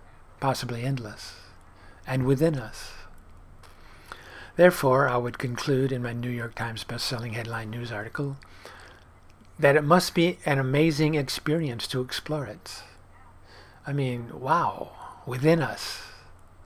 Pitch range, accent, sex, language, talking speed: 100-140 Hz, American, male, English, 120 wpm